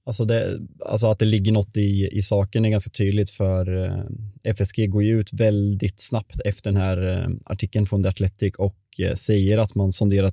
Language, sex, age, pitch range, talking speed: Swedish, male, 20-39, 100-110 Hz, 175 wpm